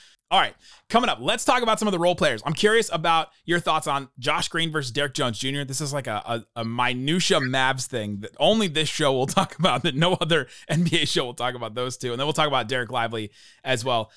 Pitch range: 125-165 Hz